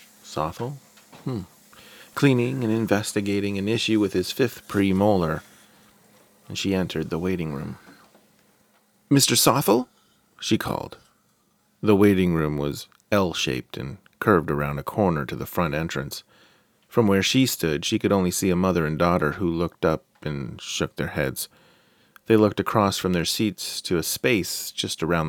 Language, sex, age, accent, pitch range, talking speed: English, male, 30-49, American, 80-115 Hz, 150 wpm